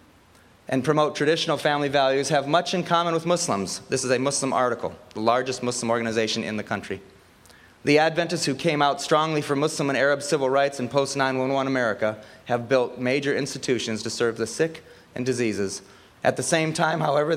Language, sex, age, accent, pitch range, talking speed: English, male, 30-49, American, 115-150 Hz, 185 wpm